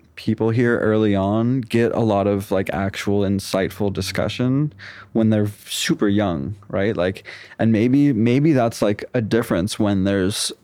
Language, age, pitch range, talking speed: English, 20-39, 100-115 Hz, 150 wpm